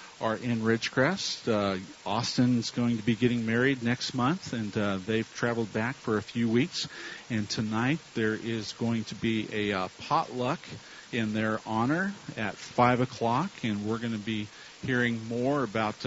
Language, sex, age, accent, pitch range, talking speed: English, male, 40-59, American, 110-135 Hz, 170 wpm